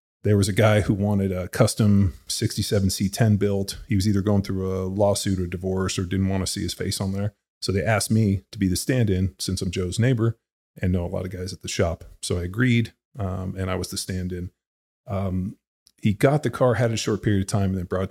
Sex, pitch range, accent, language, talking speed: male, 95-110 Hz, American, English, 245 wpm